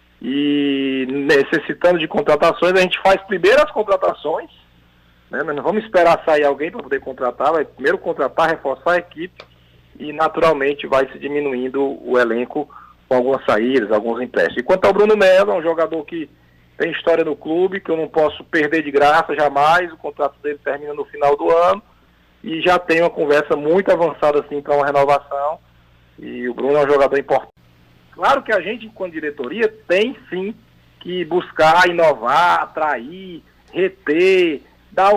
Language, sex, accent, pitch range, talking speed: Portuguese, male, Brazilian, 140-205 Hz, 170 wpm